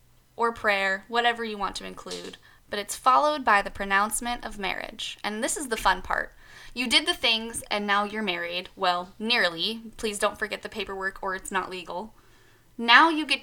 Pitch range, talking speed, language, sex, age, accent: 195-255 Hz, 190 wpm, English, female, 10-29, American